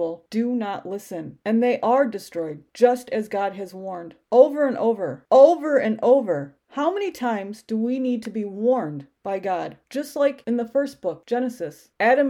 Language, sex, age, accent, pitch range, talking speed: English, female, 40-59, American, 210-270 Hz, 180 wpm